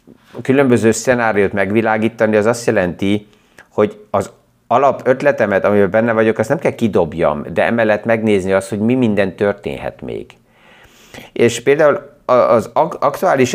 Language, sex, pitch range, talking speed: Hungarian, male, 100-120 Hz, 130 wpm